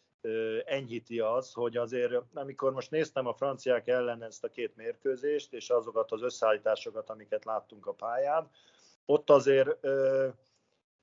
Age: 50-69